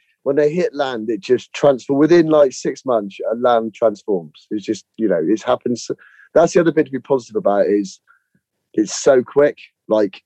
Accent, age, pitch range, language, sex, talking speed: British, 30-49, 105-155 Hz, English, male, 195 wpm